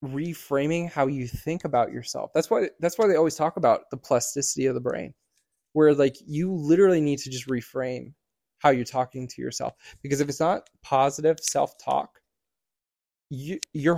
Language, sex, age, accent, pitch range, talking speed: English, male, 20-39, American, 125-145 Hz, 170 wpm